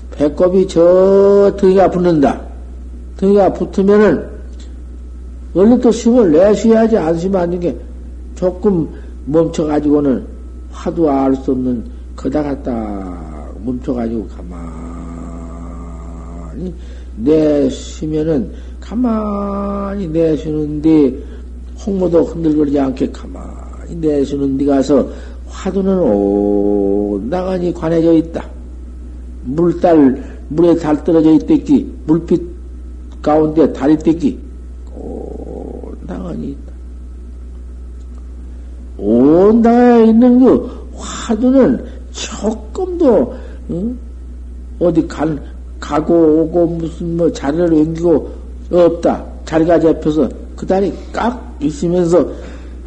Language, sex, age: Korean, male, 50-69